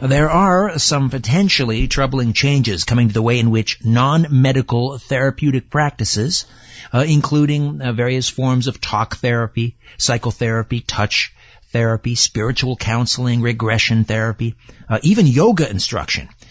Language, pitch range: English, 110-135 Hz